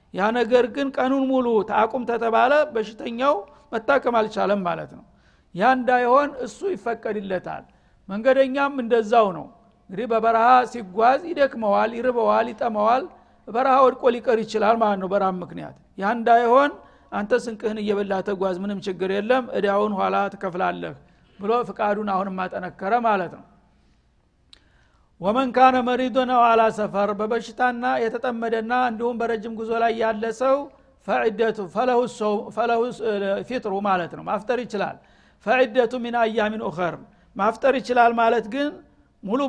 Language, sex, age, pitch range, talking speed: Amharic, male, 60-79, 205-245 Hz, 115 wpm